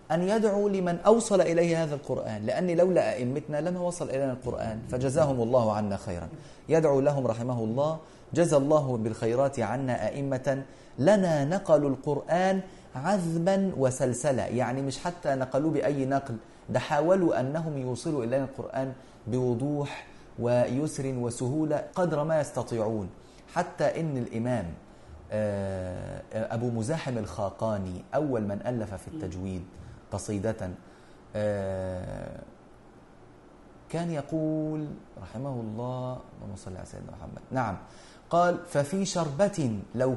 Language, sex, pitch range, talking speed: Arabic, male, 115-160 Hz, 110 wpm